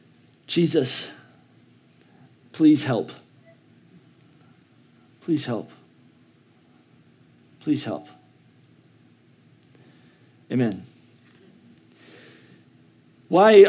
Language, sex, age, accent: English, male, 40-59, American